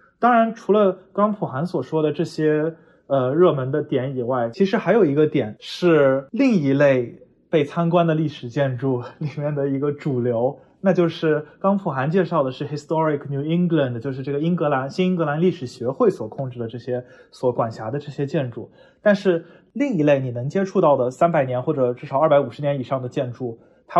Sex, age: male, 20-39